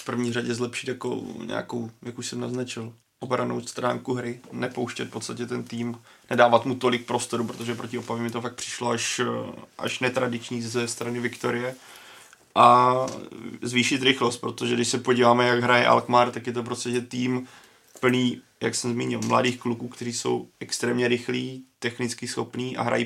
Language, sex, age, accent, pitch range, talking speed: Czech, male, 30-49, native, 120-125 Hz, 165 wpm